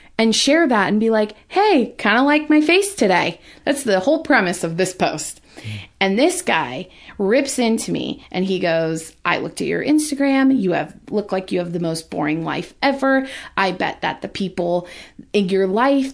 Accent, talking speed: American, 195 wpm